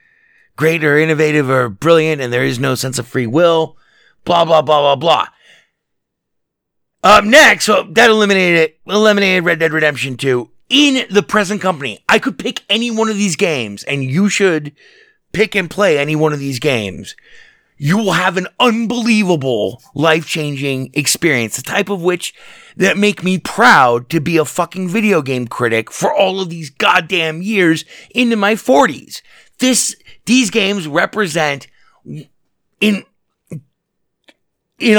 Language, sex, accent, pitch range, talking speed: English, male, American, 150-210 Hz, 155 wpm